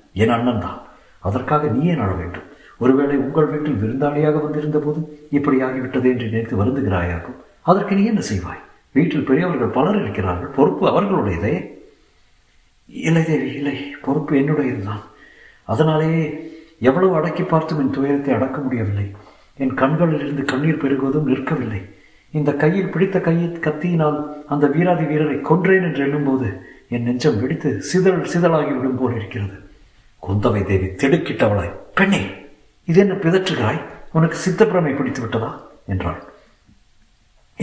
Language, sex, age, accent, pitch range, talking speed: Tamil, male, 50-69, native, 120-155 Hz, 115 wpm